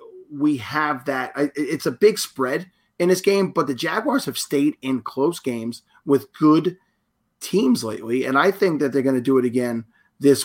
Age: 30-49